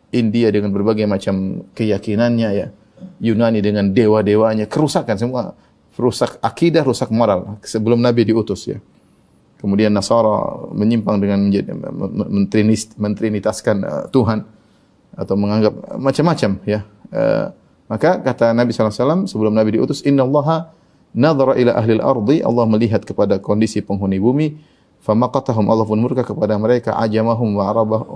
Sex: male